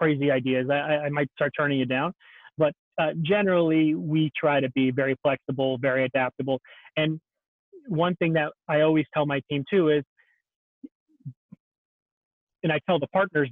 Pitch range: 140-160 Hz